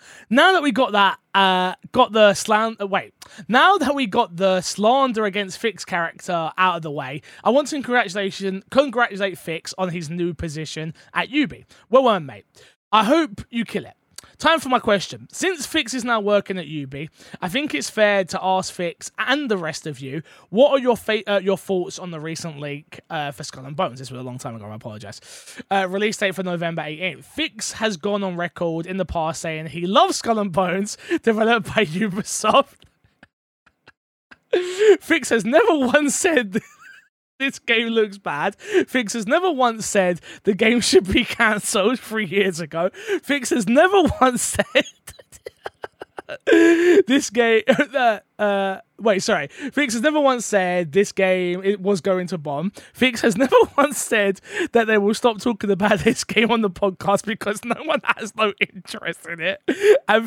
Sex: male